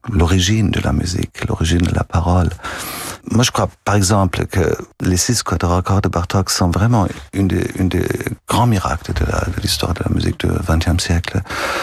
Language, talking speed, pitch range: French, 185 wpm, 85-100 Hz